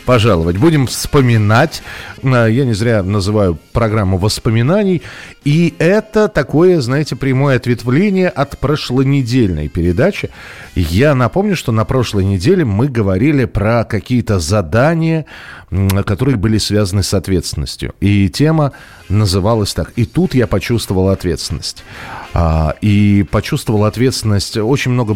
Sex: male